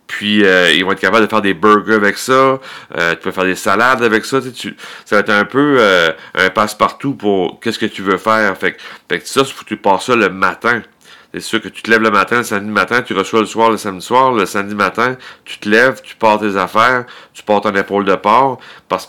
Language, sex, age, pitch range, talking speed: French, male, 40-59, 95-115 Hz, 255 wpm